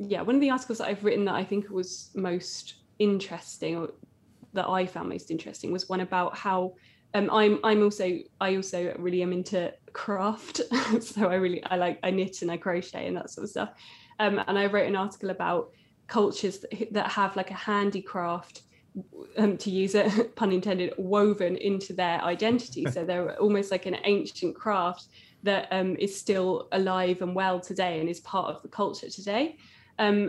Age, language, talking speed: 20-39, English, 190 wpm